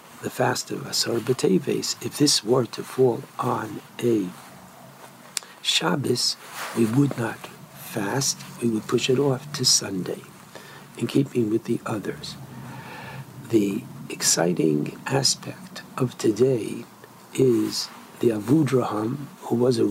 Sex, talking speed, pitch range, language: male, 120 wpm, 110-135 Hz, English